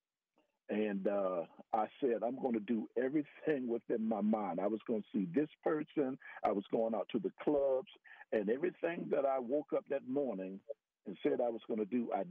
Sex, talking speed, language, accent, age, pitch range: male, 205 wpm, English, American, 50-69, 115-190 Hz